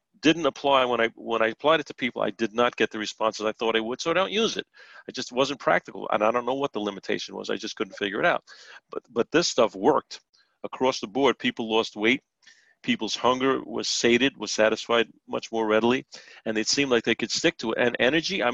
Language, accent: English, American